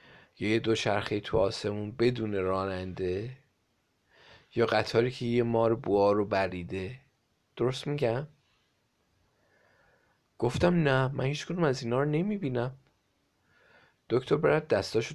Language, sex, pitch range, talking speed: Persian, male, 100-135 Hz, 110 wpm